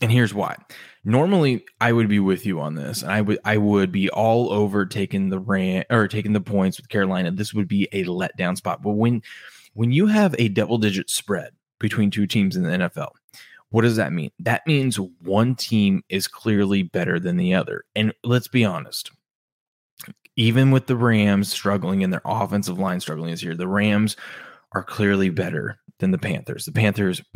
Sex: male